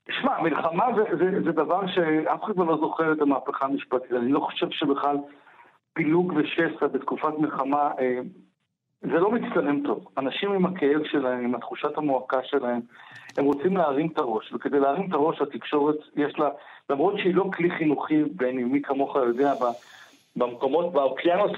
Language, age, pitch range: Hebrew, 60-79, 145-205 Hz